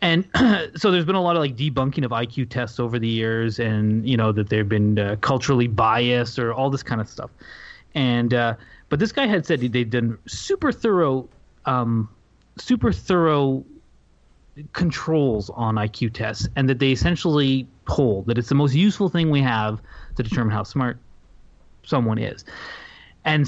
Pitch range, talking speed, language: 115-155 Hz, 175 wpm, English